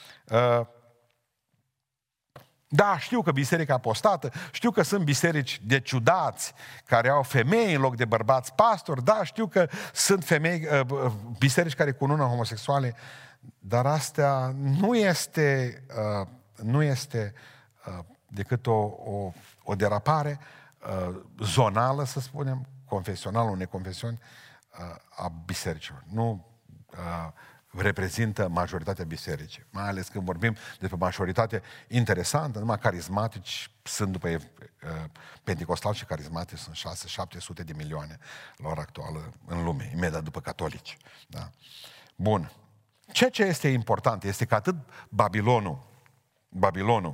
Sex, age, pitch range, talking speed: male, 50-69, 100-140 Hz, 120 wpm